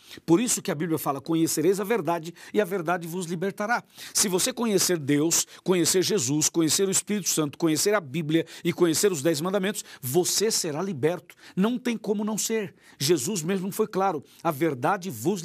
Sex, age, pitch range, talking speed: male, 60-79, 155-200 Hz, 185 wpm